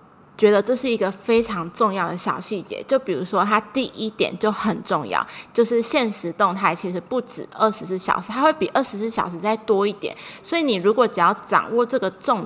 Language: Chinese